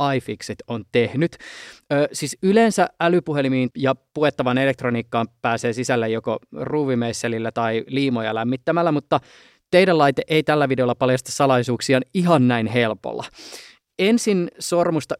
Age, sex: 20-39, male